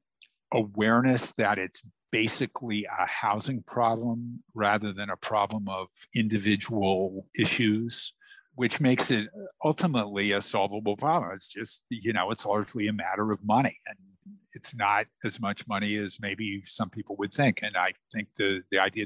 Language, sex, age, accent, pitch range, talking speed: English, male, 50-69, American, 100-120 Hz, 155 wpm